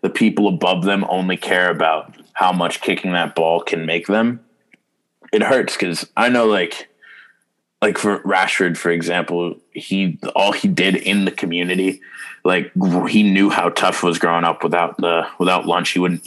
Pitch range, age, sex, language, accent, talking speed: 85-105 Hz, 20-39, male, English, American, 175 wpm